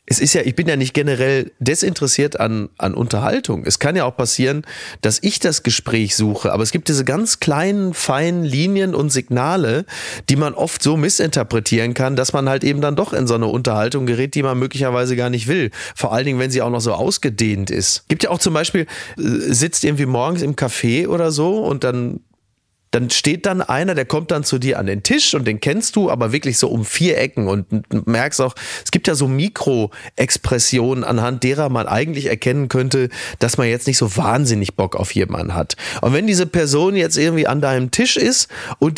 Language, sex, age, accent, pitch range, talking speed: German, male, 30-49, German, 120-160 Hz, 210 wpm